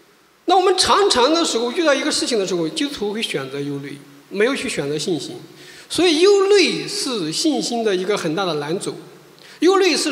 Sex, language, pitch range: male, Chinese, 215-360 Hz